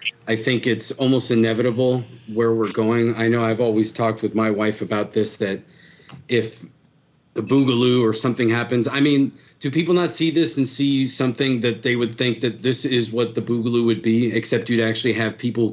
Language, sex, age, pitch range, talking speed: English, male, 40-59, 115-135 Hz, 200 wpm